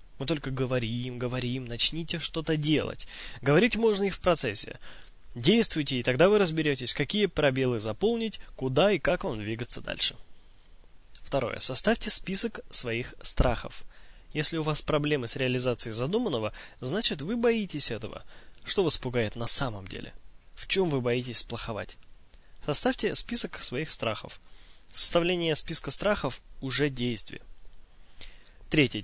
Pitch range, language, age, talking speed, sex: 125-180 Hz, Russian, 20-39, 130 wpm, male